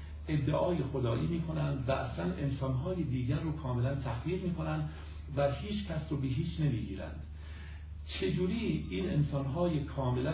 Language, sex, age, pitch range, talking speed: Persian, male, 50-69, 90-150 Hz, 135 wpm